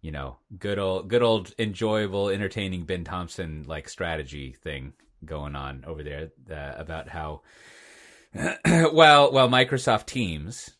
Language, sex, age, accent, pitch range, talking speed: English, male, 30-49, American, 85-115 Hz, 135 wpm